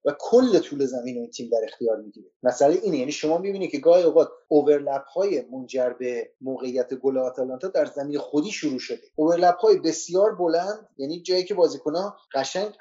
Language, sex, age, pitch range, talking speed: Persian, male, 30-49, 135-190 Hz, 185 wpm